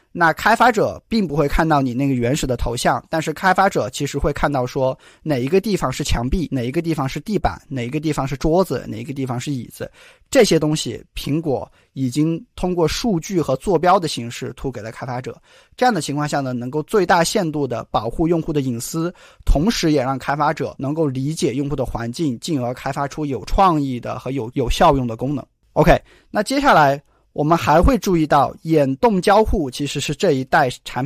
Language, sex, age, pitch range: Chinese, male, 20-39, 130-170 Hz